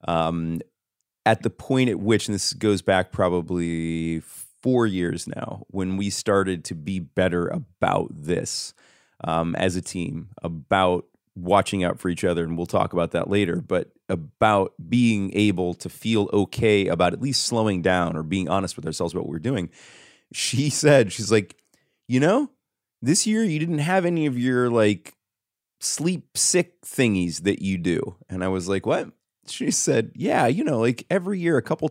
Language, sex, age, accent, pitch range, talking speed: English, male, 30-49, American, 90-125 Hz, 180 wpm